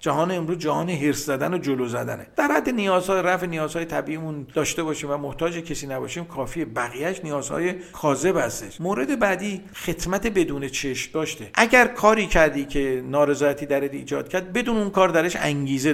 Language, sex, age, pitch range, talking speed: Persian, male, 50-69, 145-185 Hz, 165 wpm